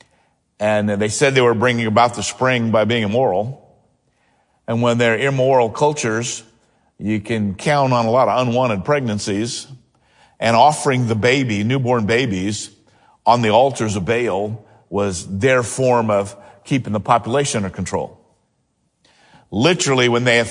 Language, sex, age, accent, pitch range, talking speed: English, male, 50-69, American, 105-140 Hz, 145 wpm